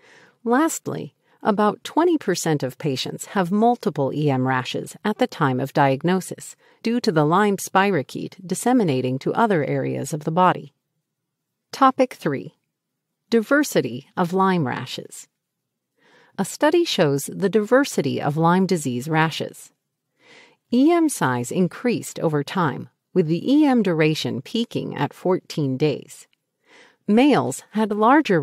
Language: English